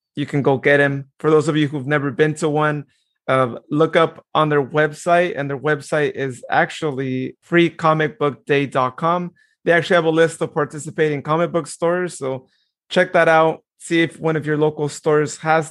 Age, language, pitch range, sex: 30-49, English, 140-165 Hz, male